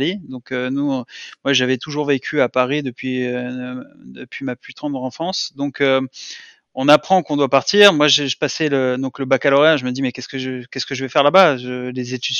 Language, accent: English, French